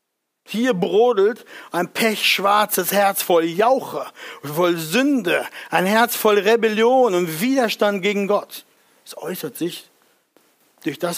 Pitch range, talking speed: 170-210 Hz, 120 wpm